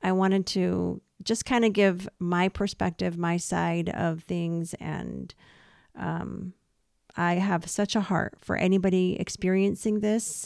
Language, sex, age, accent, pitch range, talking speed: English, female, 40-59, American, 175-200 Hz, 140 wpm